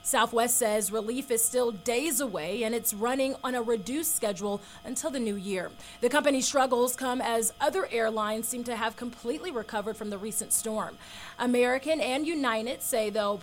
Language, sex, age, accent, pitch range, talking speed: English, female, 30-49, American, 210-255 Hz, 175 wpm